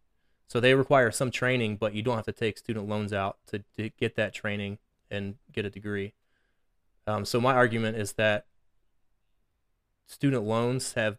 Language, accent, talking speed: English, American, 170 wpm